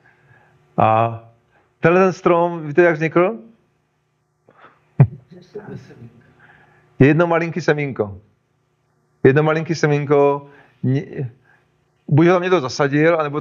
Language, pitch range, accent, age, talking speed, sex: Czech, 125-160 Hz, native, 40-59, 85 wpm, male